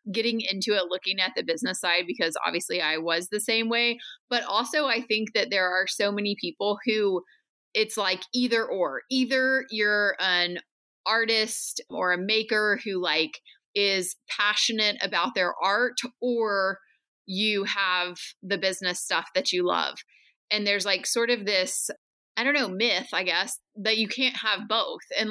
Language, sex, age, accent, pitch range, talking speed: English, female, 20-39, American, 180-220 Hz, 170 wpm